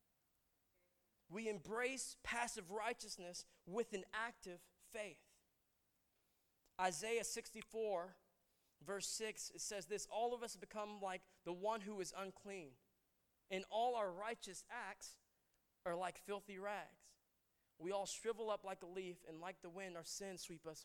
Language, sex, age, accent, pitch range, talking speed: English, male, 20-39, American, 175-210 Hz, 140 wpm